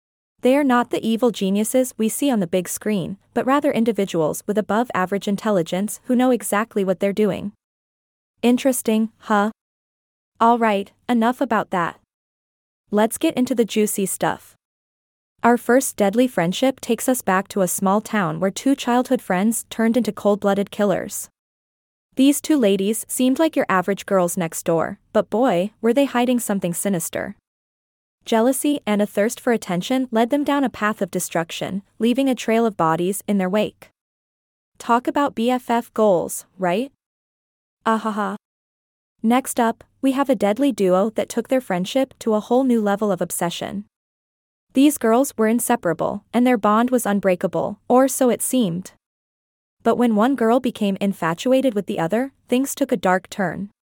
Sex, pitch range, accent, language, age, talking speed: female, 200-250 Hz, American, English, 20-39, 160 wpm